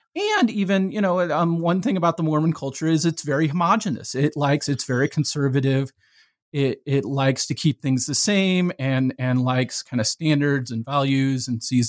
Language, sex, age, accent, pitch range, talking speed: English, male, 40-59, American, 130-165 Hz, 190 wpm